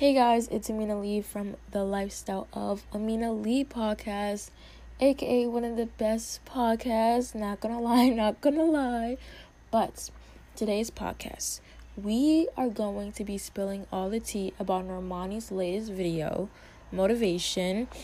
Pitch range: 190-230 Hz